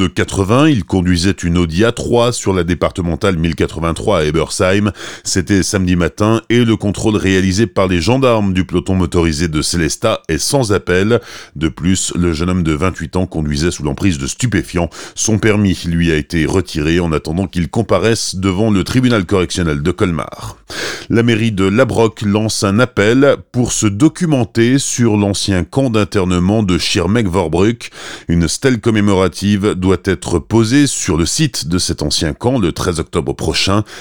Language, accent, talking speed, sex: French, French, 165 wpm, male